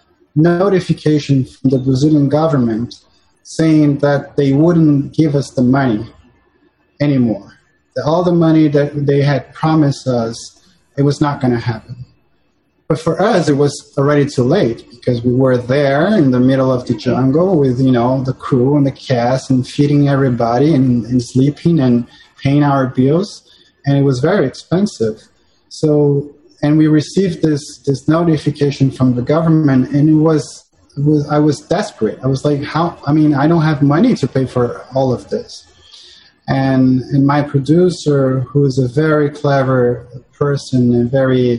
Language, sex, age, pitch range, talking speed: English, male, 30-49, 130-150 Hz, 165 wpm